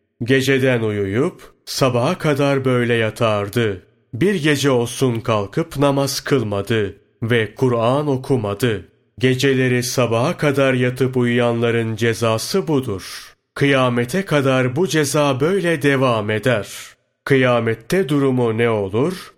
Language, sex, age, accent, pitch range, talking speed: Turkish, male, 30-49, native, 115-140 Hz, 100 wpm